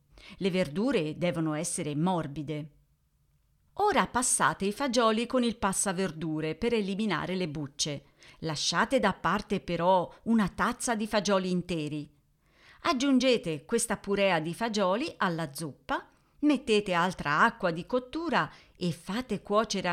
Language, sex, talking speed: Italian, female, 120 wpm